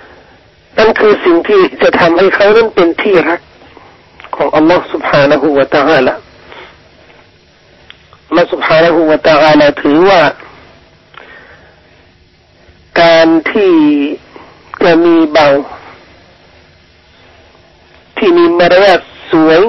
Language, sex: Thai, male